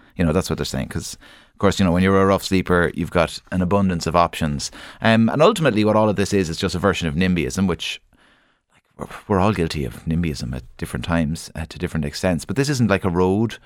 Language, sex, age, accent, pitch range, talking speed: English, male, 30-49, Irish, 90-110 Hz, 240 wpm